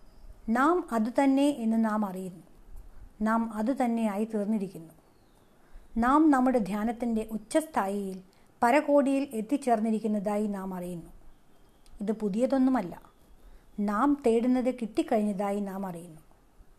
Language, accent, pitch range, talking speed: Malayalam, native, 205-250 Hz, 80 wpm